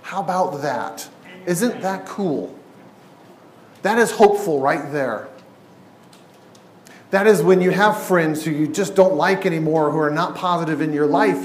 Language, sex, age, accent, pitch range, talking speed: English, male, 40-59, American, 145-185 Hz, 155 wpm